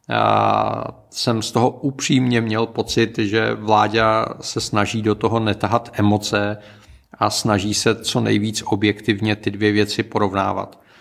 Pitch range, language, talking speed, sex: 105-115 Hz, Czech, 135 wpm, male